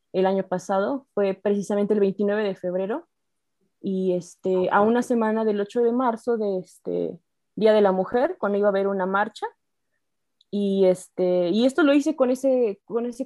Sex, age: female, 20-39